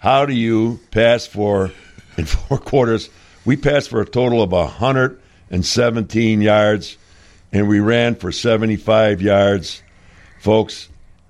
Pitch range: 100-125 Hz